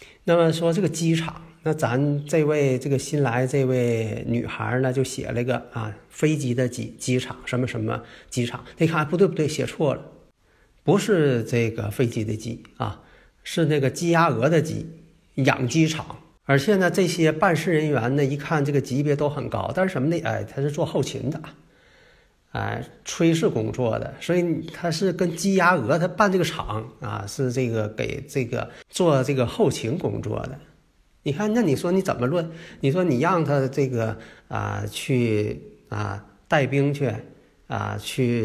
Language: Chinese